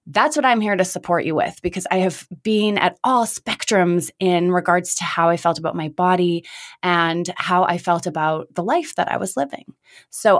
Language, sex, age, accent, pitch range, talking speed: English, female, 20-39, American, 165-215 Hz, 210 wpm